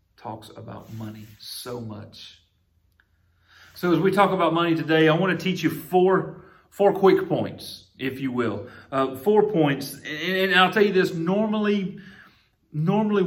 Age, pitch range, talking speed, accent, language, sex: 40-59, 110-150 Hz, 155 wpm, American, English, male